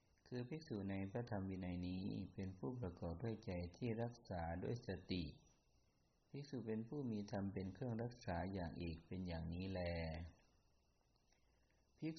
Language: Thai